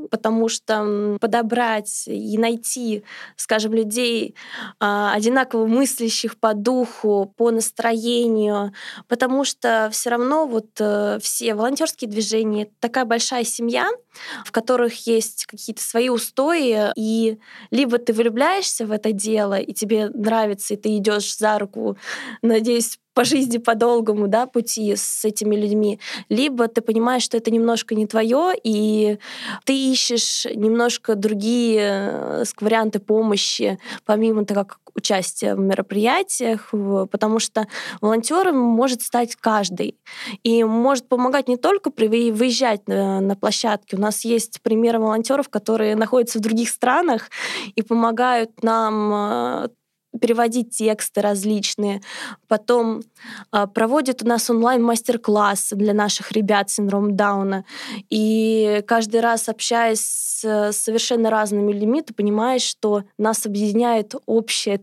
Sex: female